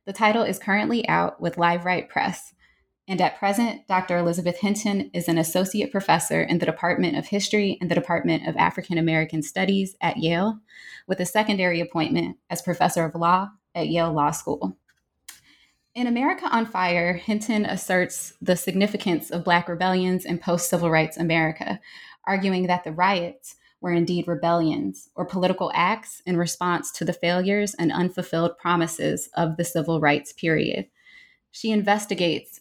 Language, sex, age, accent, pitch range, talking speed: English, female, 20-39, American, 165-190 Hz, 155 wpm